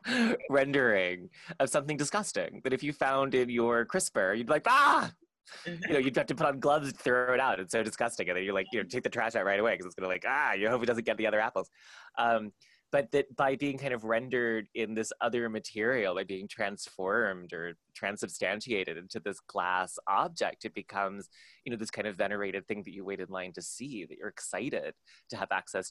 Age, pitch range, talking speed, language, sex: 20-39, 100-145 Hz, 230 wpm, English, male